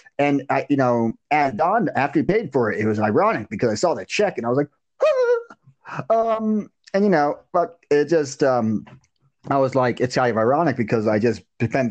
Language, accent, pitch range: English, American, 125-165 Hz